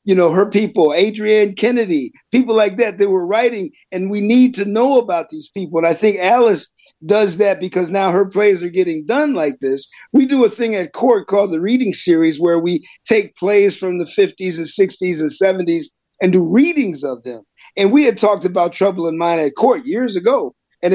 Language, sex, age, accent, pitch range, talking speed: English, male, 50-69, American, 155-210 Hz, 210 wpm